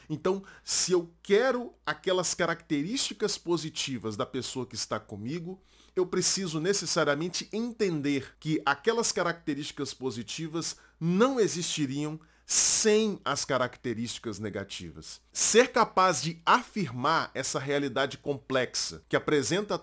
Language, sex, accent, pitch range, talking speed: Portuguese, male, Brazilian, 125-180 Hz, 105 wpm